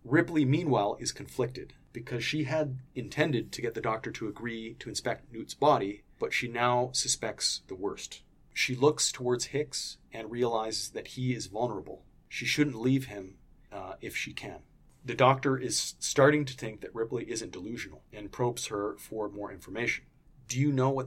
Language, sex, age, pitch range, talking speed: English, male, 30-49, 110-130 Hz, 175 wpm